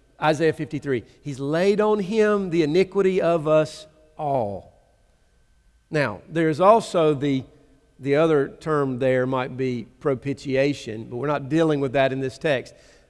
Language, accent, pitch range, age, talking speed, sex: English, American, 135-165 Hz, 40-59, 140 wpm, male